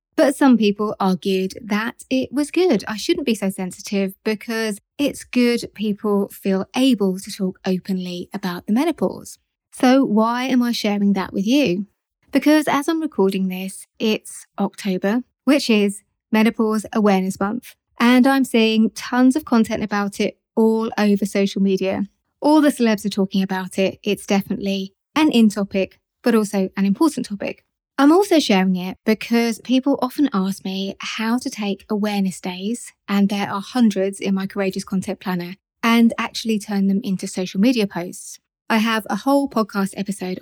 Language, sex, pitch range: English, female, 195-240 Hz